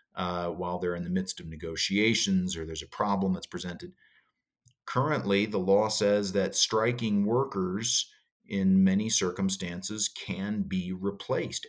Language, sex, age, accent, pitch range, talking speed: English, male, 50-69, American, 95-115 Hz, 140 wpm